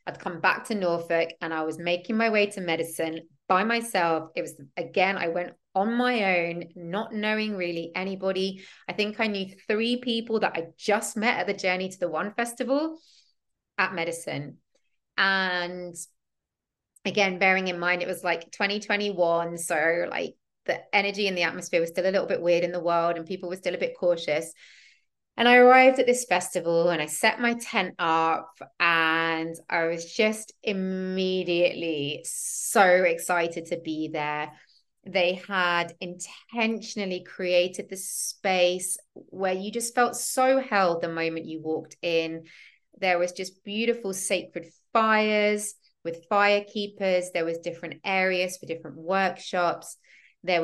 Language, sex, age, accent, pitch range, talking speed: English, female, 20-39, British, 170-205 Hz, 160 wpm